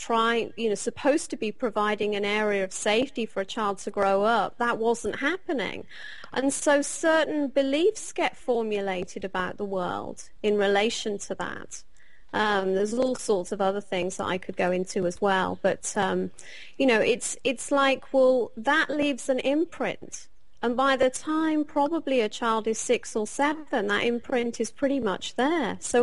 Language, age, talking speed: English, 30-49, 180 wpm